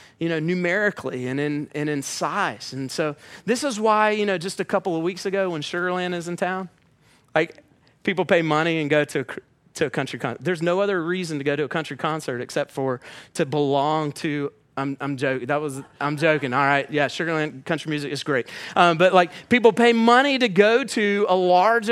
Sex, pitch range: male, 170-235 Hz